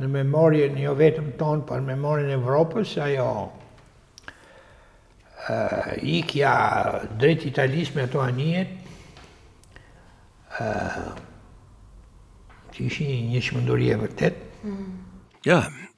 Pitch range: 115-140 Hz